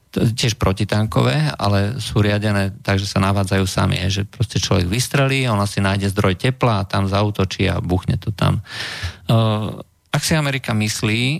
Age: 50-69